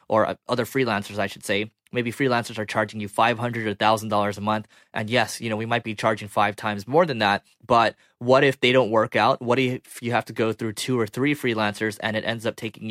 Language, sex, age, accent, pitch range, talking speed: English, male, 20-39, American, 110-125 Hz, 250 wpm